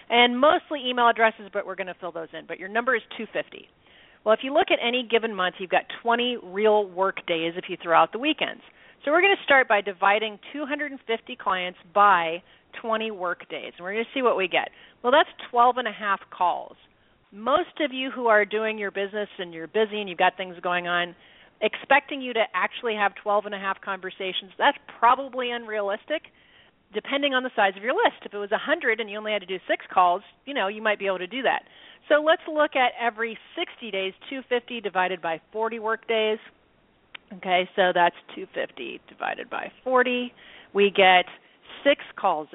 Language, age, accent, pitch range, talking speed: English, 40-59, American, 195-260 Hz, 205 wpm